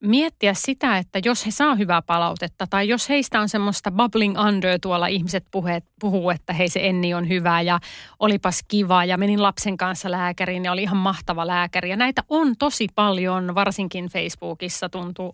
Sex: female